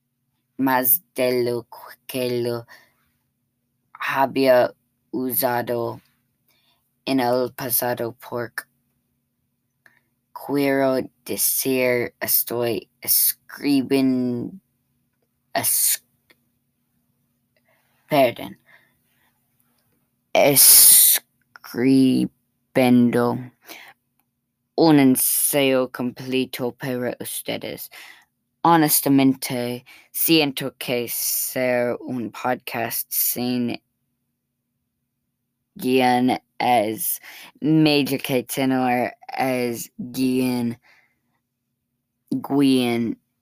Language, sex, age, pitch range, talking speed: English, female, 10-29, 120-130 Hz, 55 wpm